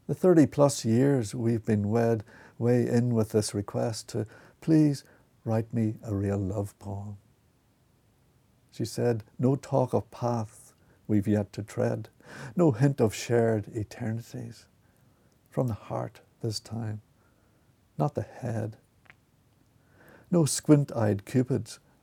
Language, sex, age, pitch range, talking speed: English, male, 60-79, 110-125 Hz, 125 wpm